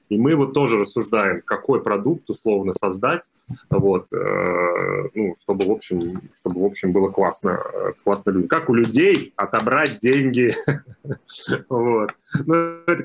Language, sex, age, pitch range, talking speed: Russian, male, 30-49, 100-135 Hz, 130 wpm